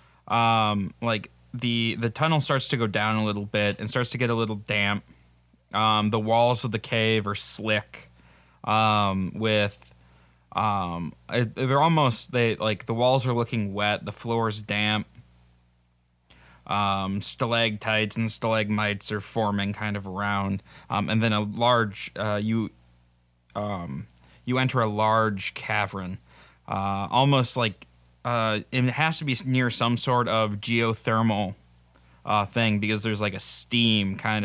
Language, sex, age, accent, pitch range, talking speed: English, male, 20-39, American, 100-115 Hz, 150 wpm